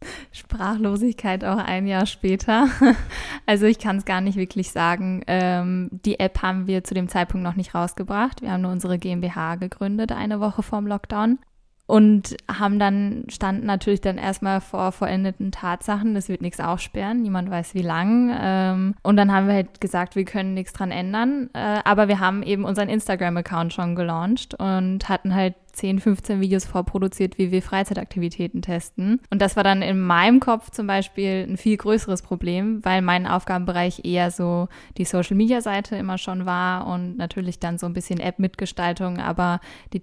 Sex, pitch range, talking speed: female, 180-205 Hz, 175 wpm